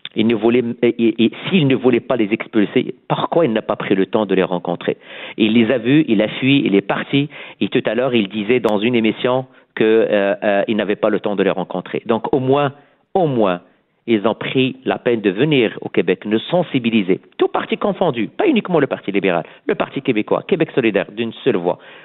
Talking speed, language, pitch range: 225 wpm, French, 110-145 Hz